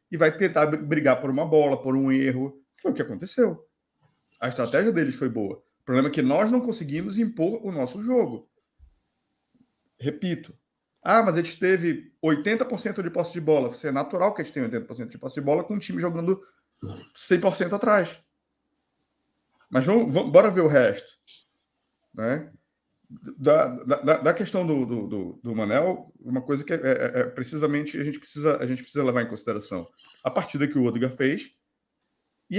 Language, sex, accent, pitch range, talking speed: Portuguese, male, Brazilian, 130-195 Hz, 170 wpm